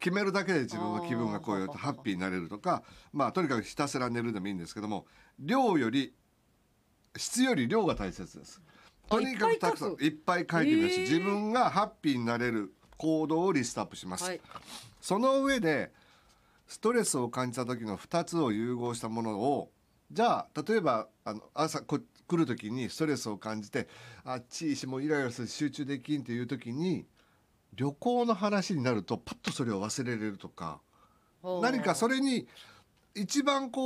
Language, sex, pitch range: Japanese, male, 120-190 Hz